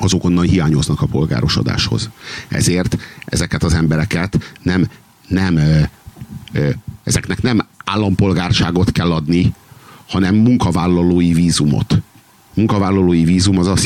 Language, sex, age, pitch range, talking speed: Hungarian, male, 50-69, 90-120 Hz, 110 wpm